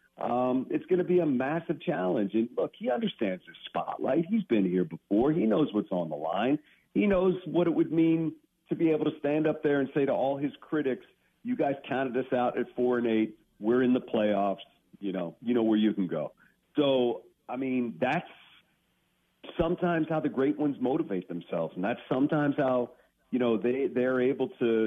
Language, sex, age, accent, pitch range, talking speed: English, male, 50-69, American, 110-135 Hz, 205 wpm